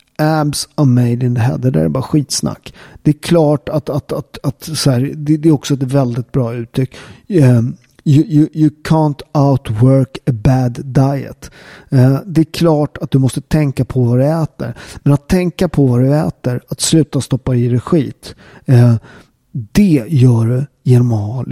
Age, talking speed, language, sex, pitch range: 50-69, 180 wpm, Swedish, male, 130-165 Hz